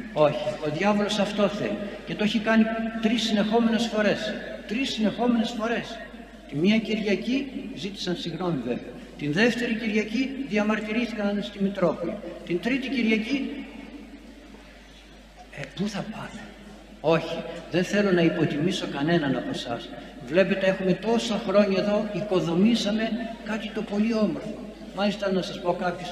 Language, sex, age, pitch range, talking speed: Greek, male, 60-79, 170-220 Hz, 130 wpm